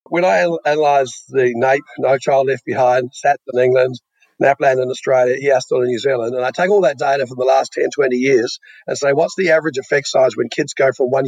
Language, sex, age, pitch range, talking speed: English, male, 50-69, 135-215 Hz, 230 wpm